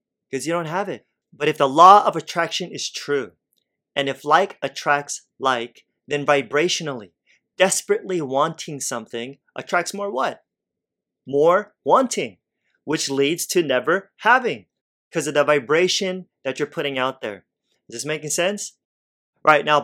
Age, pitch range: 30-49, 125-165 Hz